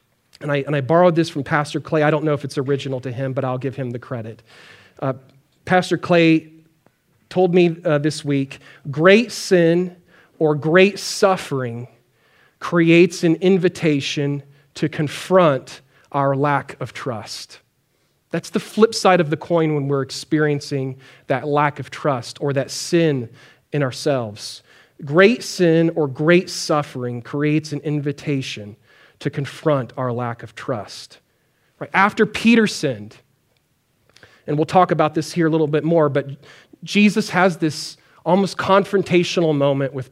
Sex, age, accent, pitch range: male, 40-59, American, 135-170 Hz